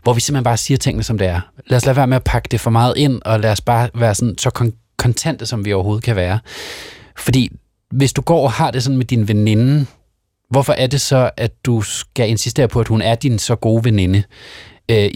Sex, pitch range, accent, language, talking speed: male, 105-125 Hz, native, Danish, 245 wpm